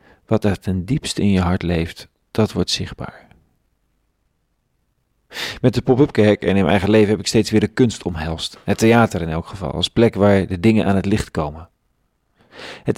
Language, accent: Dutch, Dutch